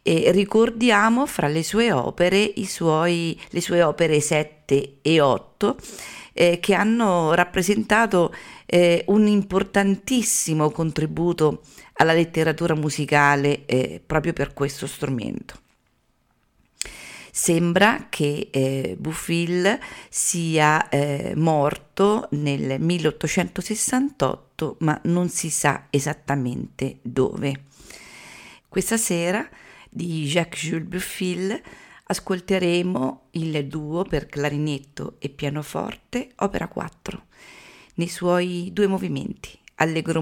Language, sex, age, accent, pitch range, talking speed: Italian, female, 50-69, native, 150-190 Hz, 95 wpm